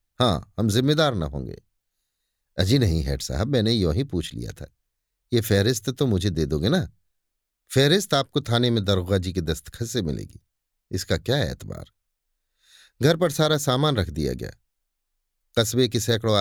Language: Hindi